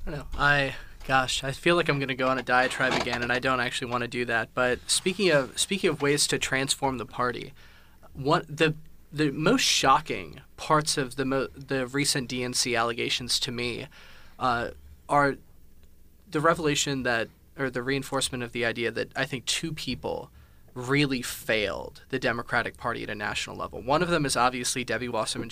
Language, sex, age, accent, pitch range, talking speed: English, male, 20-39, American, 120-140 Hz, 190 wpm